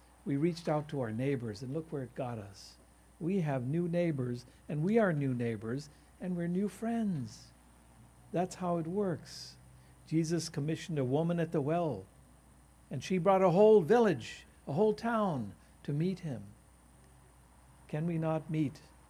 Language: English